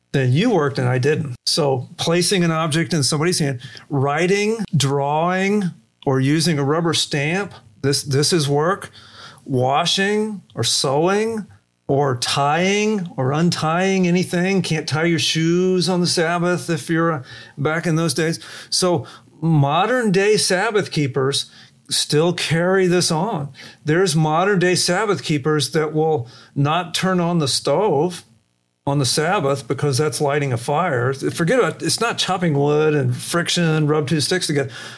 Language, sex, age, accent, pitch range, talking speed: English, male, 40-59, American, 140-180 Hz, 150 wpm